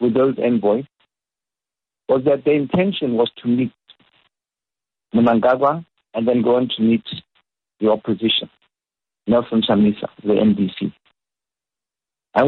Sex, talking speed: male, 115 wpm